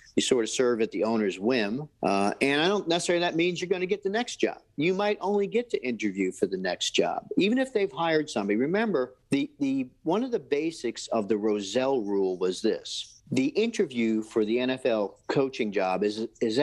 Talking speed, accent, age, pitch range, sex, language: 210 wpm, American, 50-69, 110-155 Hz, male, English